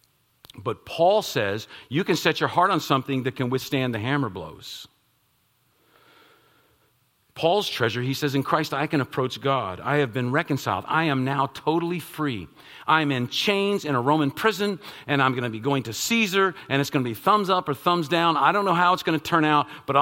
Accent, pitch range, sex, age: American, 120-160 Hz, male, 50-69